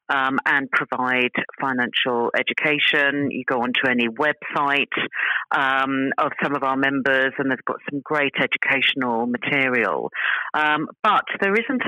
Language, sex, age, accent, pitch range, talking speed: English, female, 40-59, British, 130-160 Hz, 135 wpm